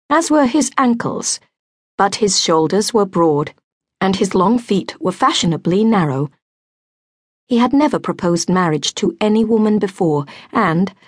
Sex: female